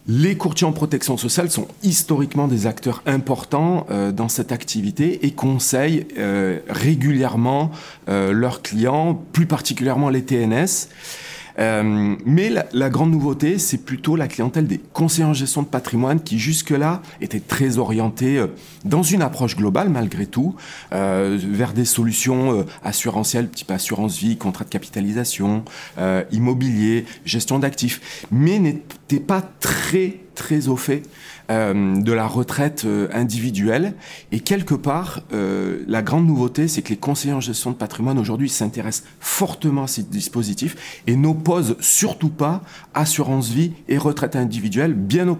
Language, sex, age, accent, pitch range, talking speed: French, male, 30-49, French, 115-155 Hz, 145 wpm